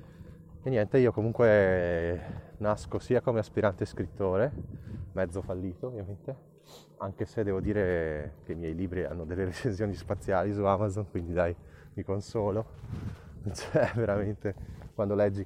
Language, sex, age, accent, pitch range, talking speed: Italian, male, 20-39, native, 85-105 Hz, 130 wpm